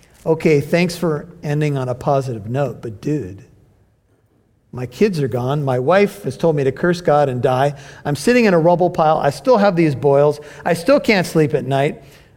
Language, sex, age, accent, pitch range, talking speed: English, male, 50-69, American, 130-180 Hz, 200 wpm